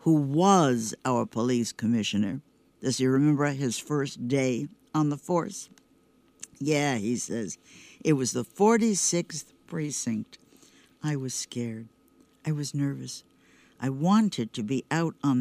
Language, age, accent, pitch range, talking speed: English, 60-79, American, 135-190 Hz, 130 wpm